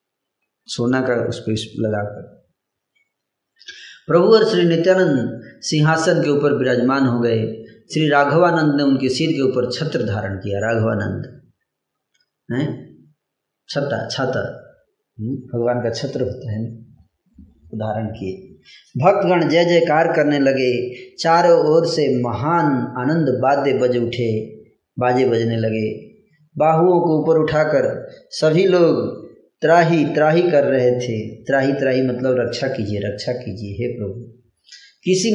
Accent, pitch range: native, 120-170 Hz